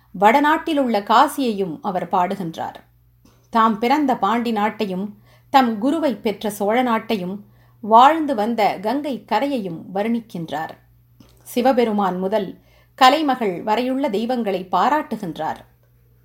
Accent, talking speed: native, 90 wpm